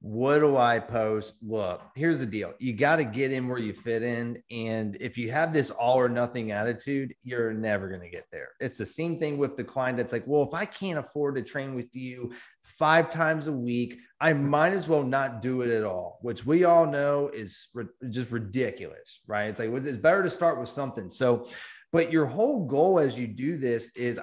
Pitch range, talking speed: 120-150 Hz, 225 wpm